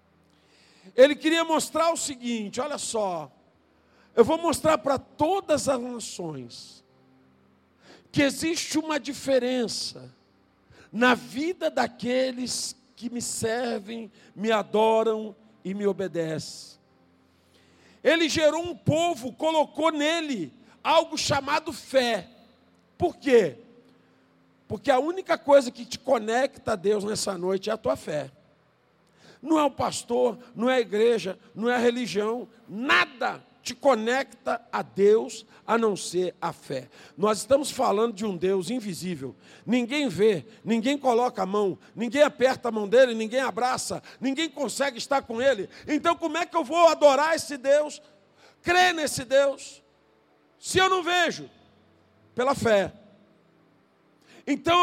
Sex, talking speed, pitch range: male, 130 wpm, 210-290 Hz